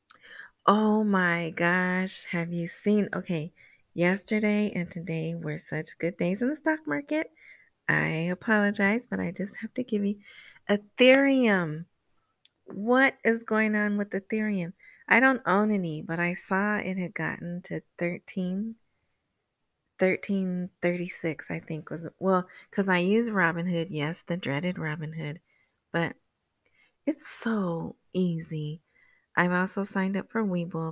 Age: 30-49